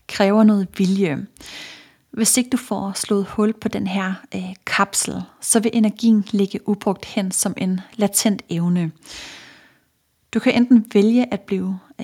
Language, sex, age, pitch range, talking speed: Danish, female, 30-49, 190-225 Hz, 145 wpm